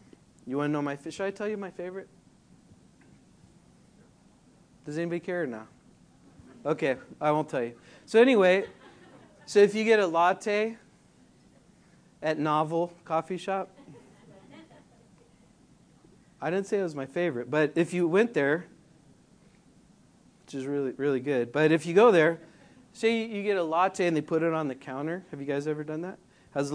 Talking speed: 170 wpm